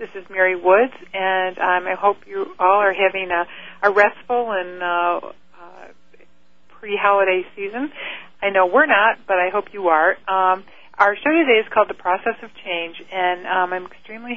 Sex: female